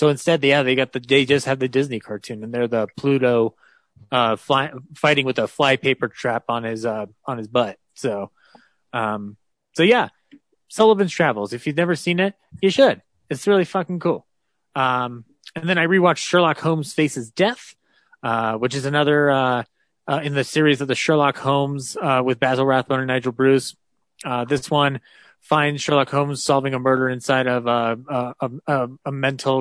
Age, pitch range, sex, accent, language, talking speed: 30-49, 120-150 Hz, male, American, English, 185 wpm